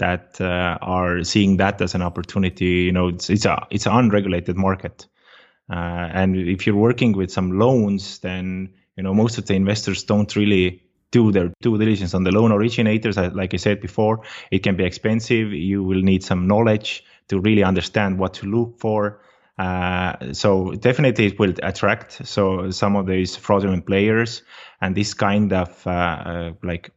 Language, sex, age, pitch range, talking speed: English, male, 20-39, 90-105 Hz, 180 wpm